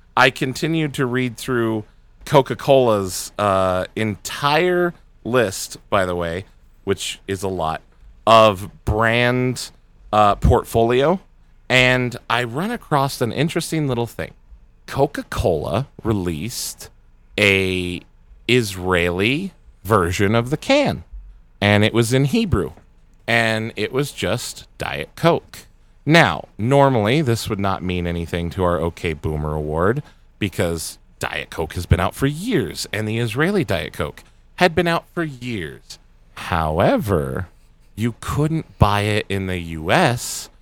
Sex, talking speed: male, 125 wpm